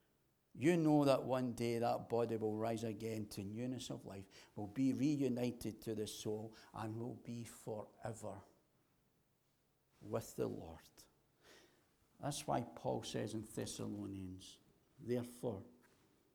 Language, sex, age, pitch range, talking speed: English, male, 60-79, 105-140 Hz, 125 wpm